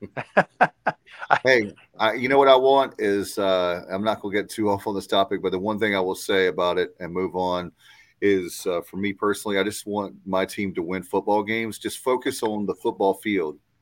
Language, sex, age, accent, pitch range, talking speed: English, male, 40-59, American, 95-105 Hz, 215 wpm